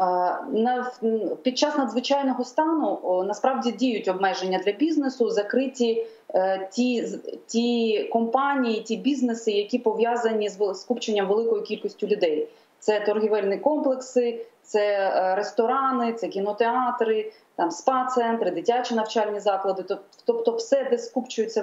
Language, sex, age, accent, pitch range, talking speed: Ukrainian, female, 30-49, native, 195-245 Hz, 105 wpm